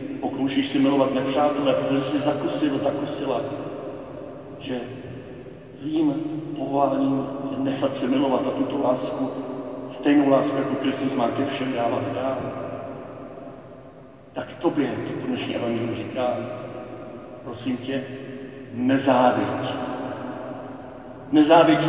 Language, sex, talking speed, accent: Czech, male, 105 wpm, native